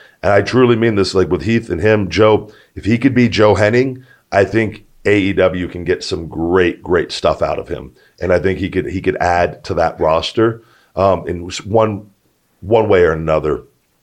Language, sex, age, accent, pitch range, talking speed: English, male, 40-59, American, 100-140 Hz, 200 wpm